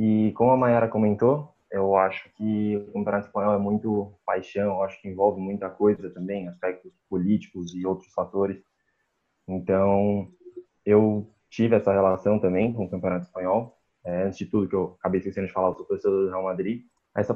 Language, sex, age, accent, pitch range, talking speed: Portuguese, male, 20-39, Brazilian, 95-110 Hz, 185 wpm